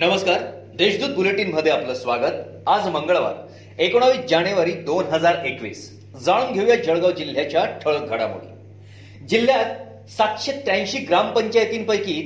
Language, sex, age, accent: Marathi, male, 40-59, native